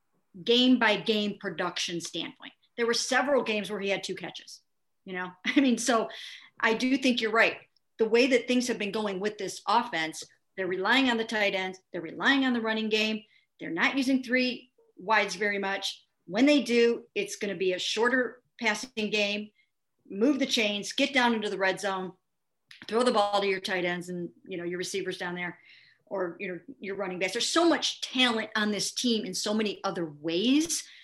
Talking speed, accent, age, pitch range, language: 200 wpm, American, 50-69, 190-250 Hz, English